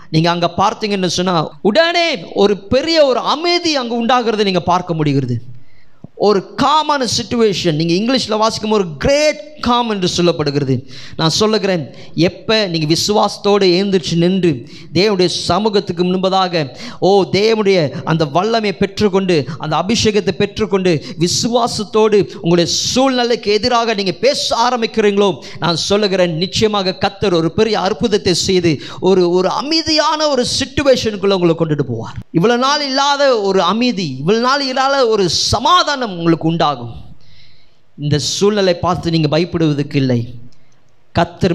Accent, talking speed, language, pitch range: native, 120 wpm, Tamil, 150-210 Hz